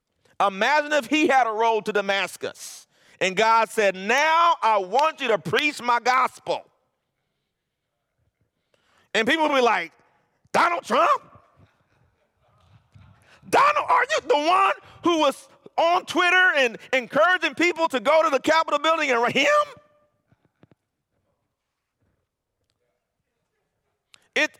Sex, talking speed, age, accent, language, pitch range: male, 115 wpm, 40-59, American, English, 230-315 Hz